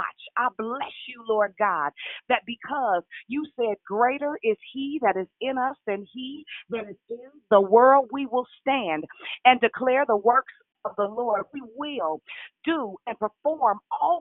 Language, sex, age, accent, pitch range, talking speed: English, female, 40-59, American, 220-280 Hz, 165 wpm